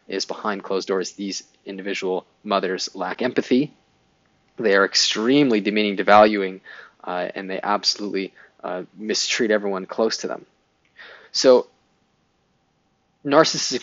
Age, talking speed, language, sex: 20-39, 115 wpm, English, male